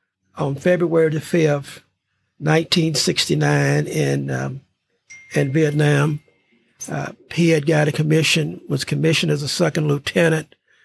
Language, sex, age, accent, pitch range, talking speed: English, male, 50-69, American, 135-160 Hz, 115 wpm